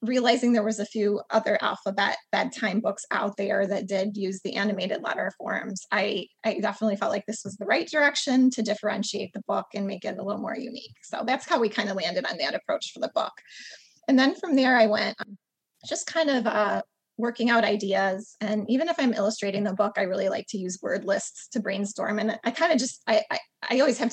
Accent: American